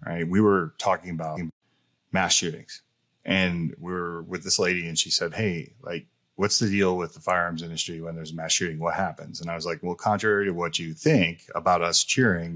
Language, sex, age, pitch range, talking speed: English, male, 30-49, 85-105 Hz, 210 wpm